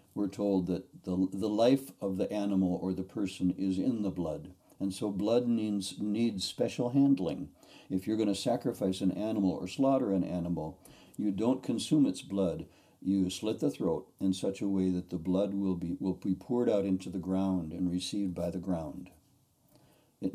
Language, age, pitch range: English, 60-79, 90-110 Hz